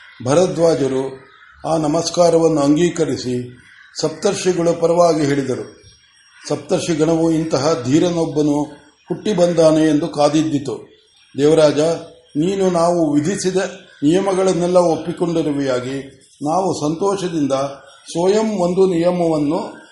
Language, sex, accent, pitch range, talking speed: Kannada, male, native, 155-185 Hz, 80 wpm